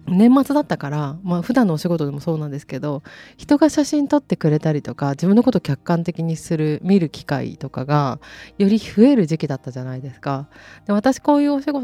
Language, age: Japanese, 20-39